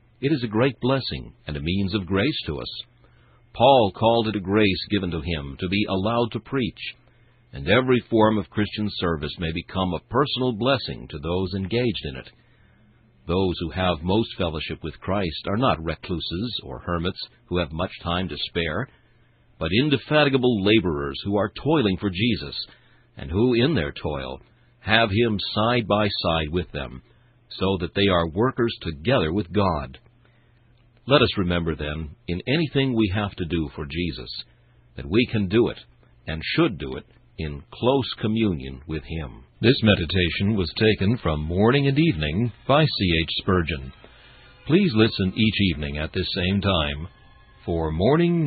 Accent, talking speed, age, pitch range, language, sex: American, 165 wpm, 60-79, 85-120 Hz, English, male